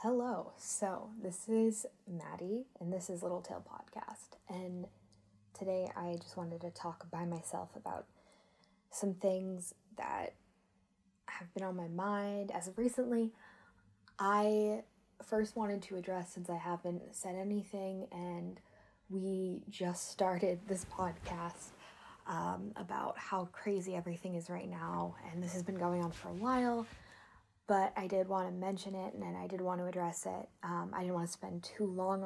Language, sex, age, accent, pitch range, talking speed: English, female, 10-29, American, 175-195 Hz, 160 wpm